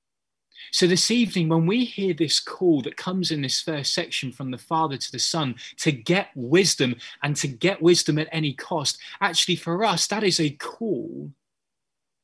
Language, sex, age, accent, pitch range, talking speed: English, male, 20-39, British, 130-175 Hz, 180 wpm